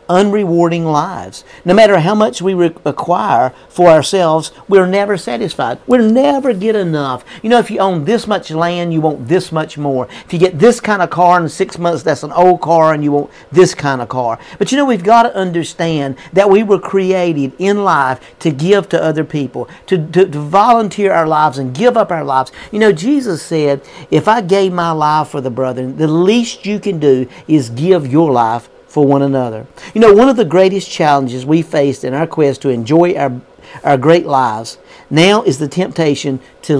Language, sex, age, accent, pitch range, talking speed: English, male, 50-69, American, 150-205 Hz, 205 wpm